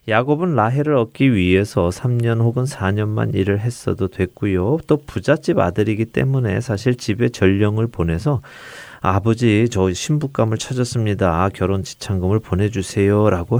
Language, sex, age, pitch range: Korean, male, 30-49, 95-130 Hz